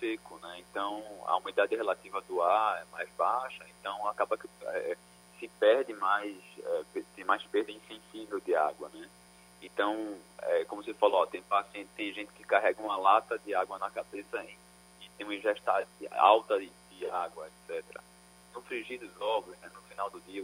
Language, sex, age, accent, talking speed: Portuguese, male, 20-39, Brazilian, 180 wpm